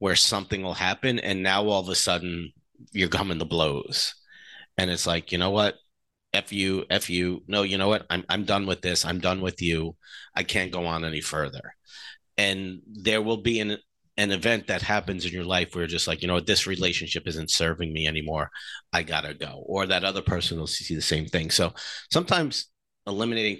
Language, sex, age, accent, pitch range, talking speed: English, male, 40-59, American, 90-105 Hz, 210 wpm